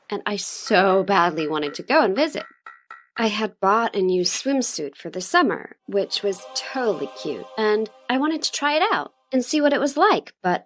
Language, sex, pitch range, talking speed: English, female, 190-280 Hz, 205 wpm